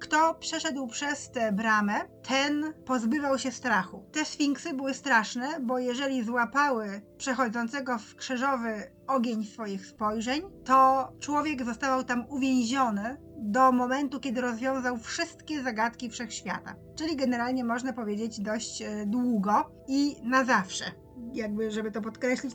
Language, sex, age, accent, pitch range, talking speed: Polish, female, 20-39, native, 235-280 Hz, 125 wpm